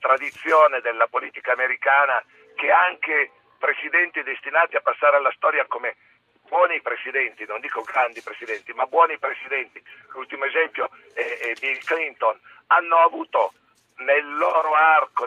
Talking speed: 130 wpm